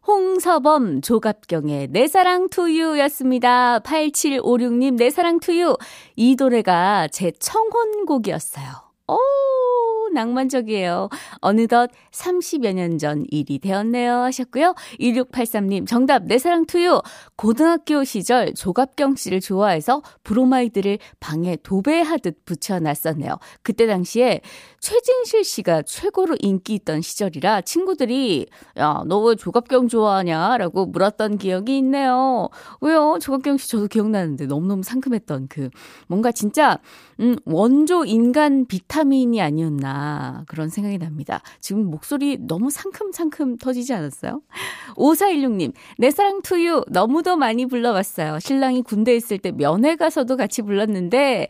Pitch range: 200-300 Hz